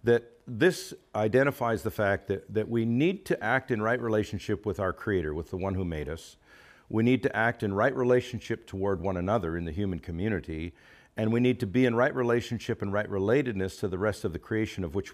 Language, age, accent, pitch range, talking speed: English, 50-69, American, 95-120 Hz, 220 wpm